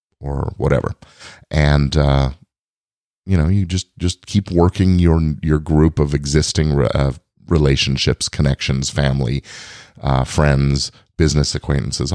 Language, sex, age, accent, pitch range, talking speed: English, male, 40-59, American, 70-95 Hz, 120 wpm